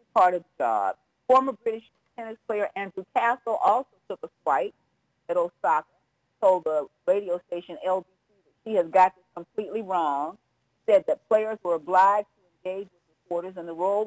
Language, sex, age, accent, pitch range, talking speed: English, female, 50-69, American, 170-215 Hz, 160 wpm